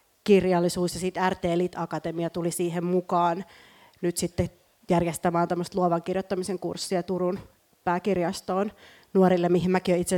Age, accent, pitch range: 30-49, native, 170-195 Hz